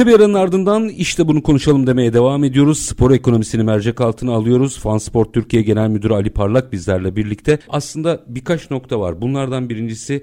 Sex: male